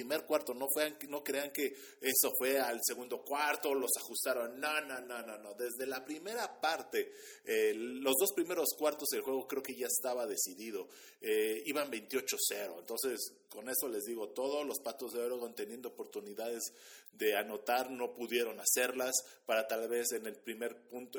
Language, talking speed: Spanish, 175 wpm